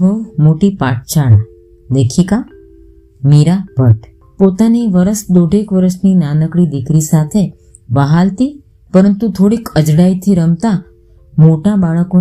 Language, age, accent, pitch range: Gujarati, 20-39, native, 135-195 Hz